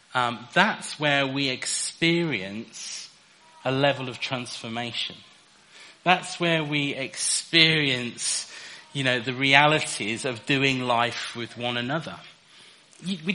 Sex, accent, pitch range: male, British, 130-160 Hz